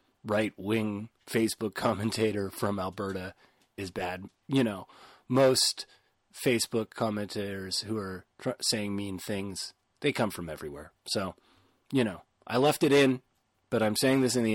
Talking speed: 140 wpm